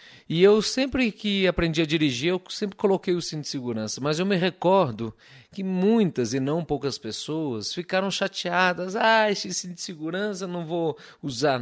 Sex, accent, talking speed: male, Brazilian, 175 wpm